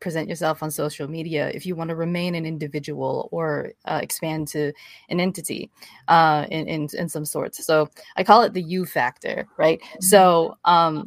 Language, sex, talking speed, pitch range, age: English, female, 185 wpm, 150-180 Hz, 20-39